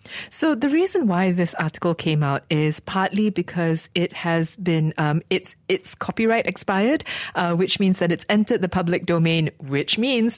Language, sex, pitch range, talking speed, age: English, female, 165-200 Hz, 175 wpm, 20-39